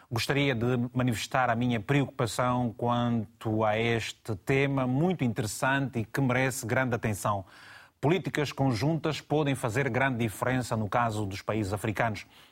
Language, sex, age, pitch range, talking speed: Portuguese, male, 30-49, 115-140 Hz, 135 wpm